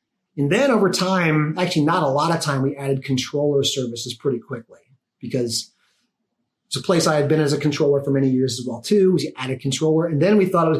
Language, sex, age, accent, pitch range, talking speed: English, male, 30-49, American, 140-175 Hz, 230 wpm